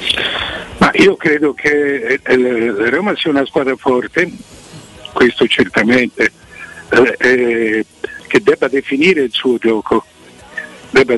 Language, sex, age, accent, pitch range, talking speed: Italian, male, 60-79, native, 120-155 Hz, 115 wpm